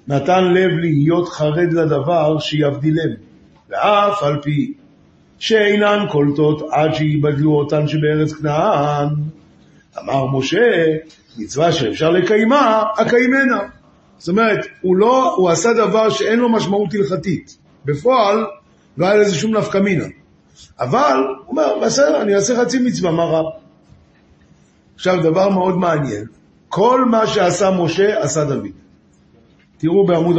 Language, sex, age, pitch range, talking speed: Hebrew, male, 50-69, 155-205 Hz, 120 wpm